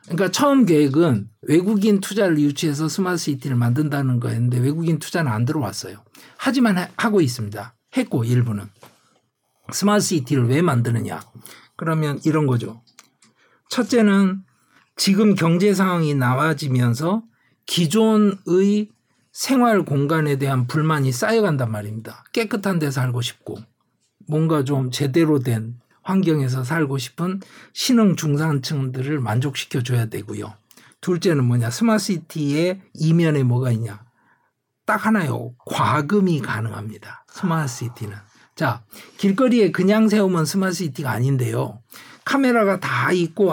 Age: 50-69